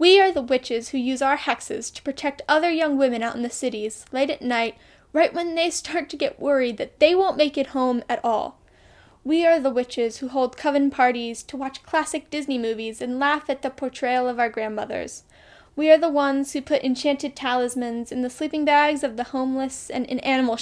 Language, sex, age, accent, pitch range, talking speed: English, female, 10-29, American, 250-300 Hz, 215 wpm